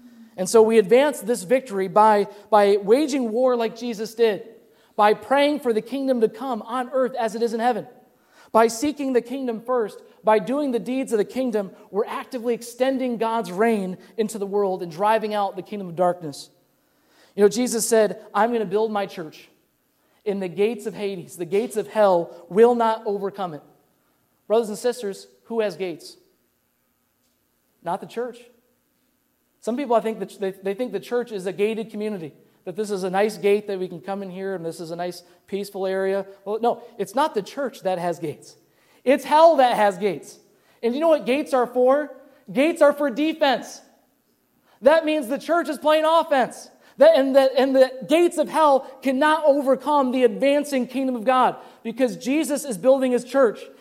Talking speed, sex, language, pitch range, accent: 185 wpm, male, English, 205-265 Hz, American